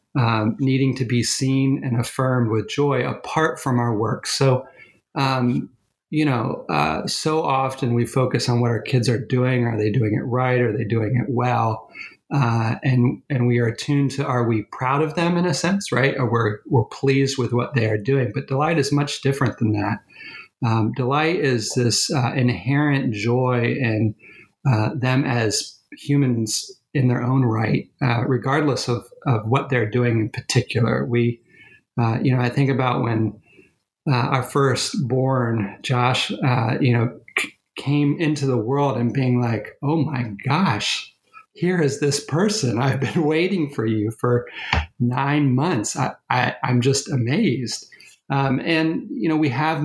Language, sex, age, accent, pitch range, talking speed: English, male, 40-59, American, 120-140 Hz, 175 wpm